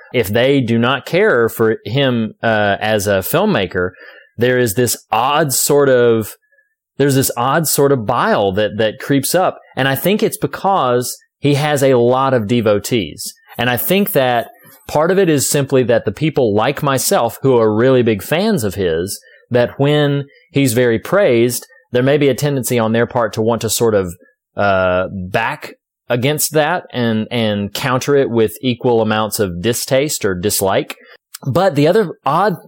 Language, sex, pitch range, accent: English, male, 110-140 Hz, American